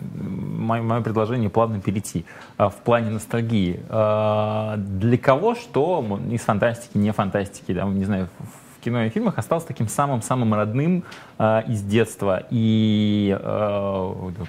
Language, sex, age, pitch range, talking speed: Russian, male, 20-39, 95-120 Hz, 140 wpm